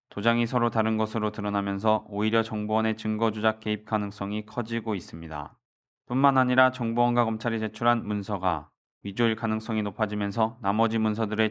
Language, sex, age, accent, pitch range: Korean, male, 20-39, native, 105-125 Hz